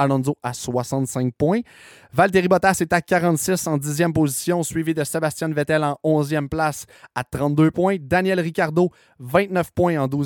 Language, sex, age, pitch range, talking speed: French, male, 20-39, 145-175 Hz, 160 wpm